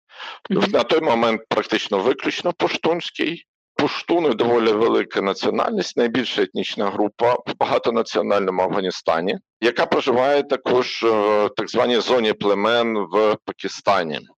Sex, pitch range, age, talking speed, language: male, 105-160 Hz, 50-69, 115 wpm, Ukrainian